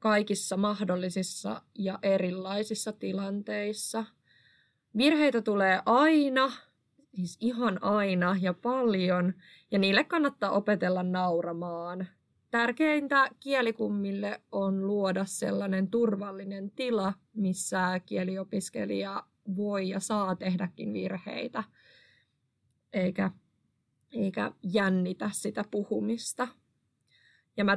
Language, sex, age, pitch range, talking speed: Finnish, female, 20-39, 185-220 Hz, 85 wpm